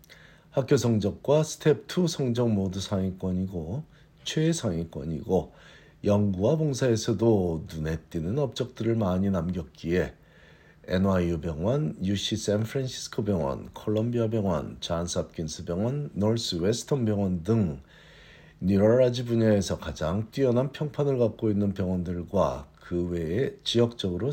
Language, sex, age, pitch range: Korean, male, 50-69, 90-120 Hz